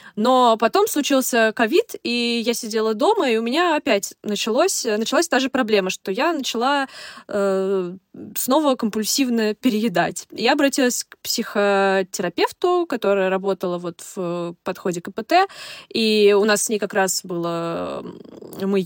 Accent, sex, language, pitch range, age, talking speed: native, female, Russian, 200-270 Hz, 20-39, 135 wpm